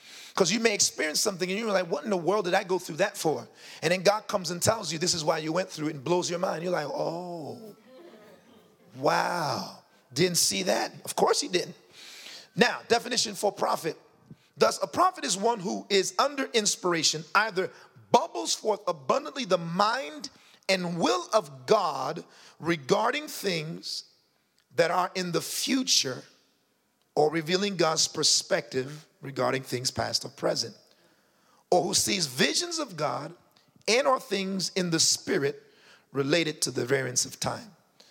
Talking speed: 165 wpm